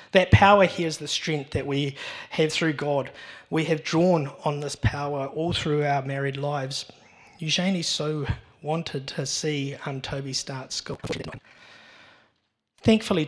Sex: male